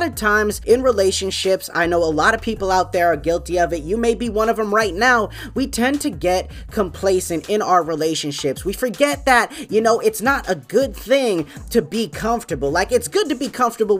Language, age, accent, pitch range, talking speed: English, 20-39, American, 170-230 Hz, 220 wpm